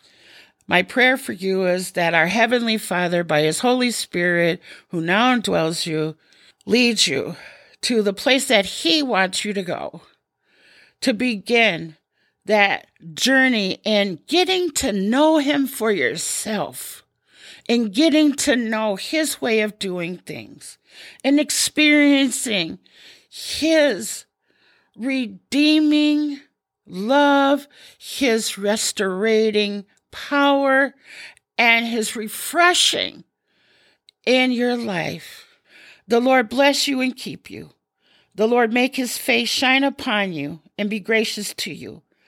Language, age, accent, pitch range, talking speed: English, 50-69, American, 200-270 Hz, 120 wpm